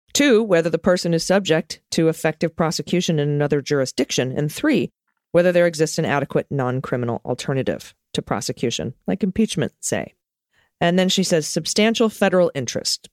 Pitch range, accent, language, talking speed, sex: 155-210 Hz, American, English, 150 wpm, female